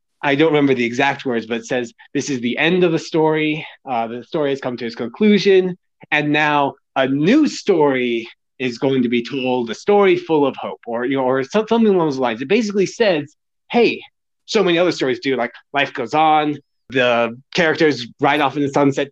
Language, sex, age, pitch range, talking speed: English, male, 30-49, 135-175 Hz, 215 wpm